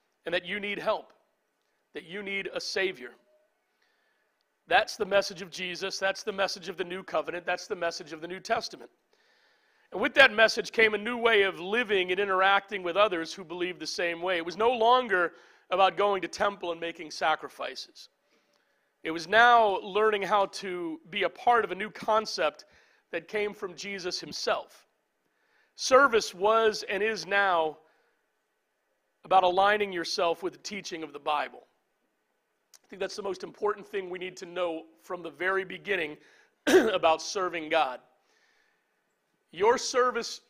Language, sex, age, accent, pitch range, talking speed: English, male, 40-59, American, 180-225 Hz, 165 wpm